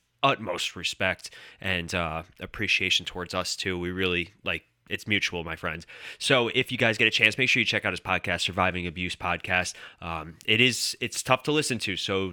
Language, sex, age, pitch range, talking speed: English, male, 20-39, 95-130 Hz, 200 wpm